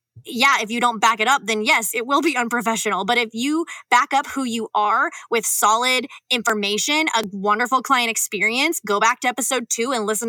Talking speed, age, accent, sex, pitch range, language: 205 wpm, 20-39, American, female, 220-275 Hz, English